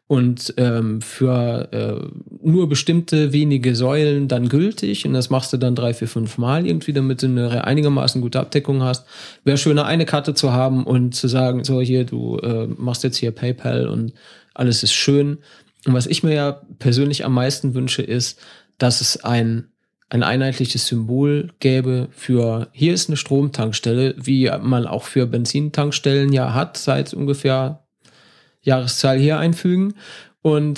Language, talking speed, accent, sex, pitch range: German, 160 wpm, German, male, 125-140 Hz